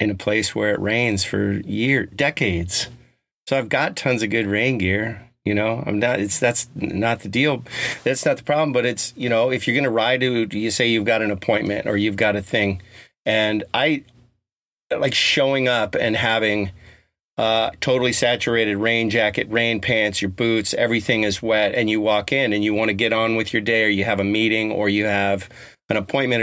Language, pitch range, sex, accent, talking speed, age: English, 105-125 Hz, male, American, 215 wpm, 40-59